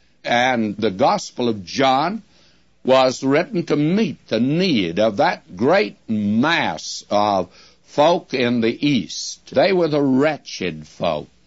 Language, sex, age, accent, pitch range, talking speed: English, male, 60-79, American, 105-155 Hz, 130 wpm